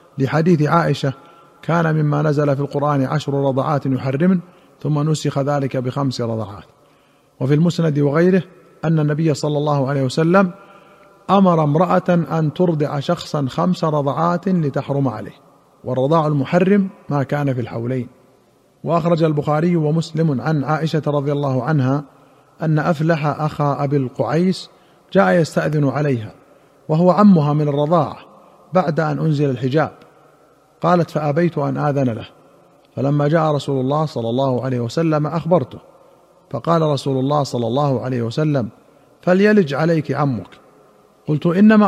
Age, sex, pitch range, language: 50-69, male, 140-170 Hz, Arabic